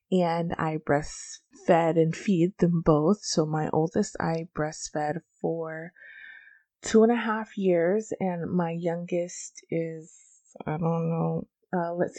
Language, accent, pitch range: English, American, 165-220 Hz